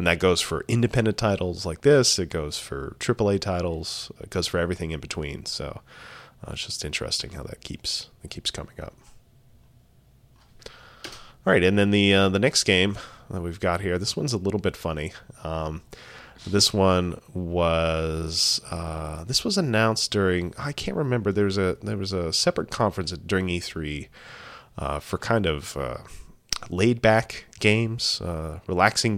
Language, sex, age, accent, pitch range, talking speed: English, male, 30-49, American, 80-100 Hz, 170 wpm